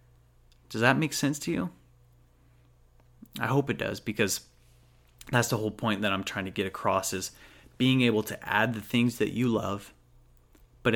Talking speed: 175 wpm